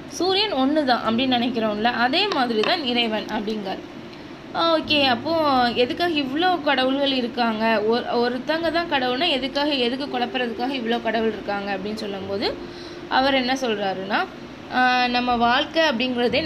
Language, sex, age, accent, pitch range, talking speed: Tamil, female, 20-39, native, 230-280 Hz, 115 wpm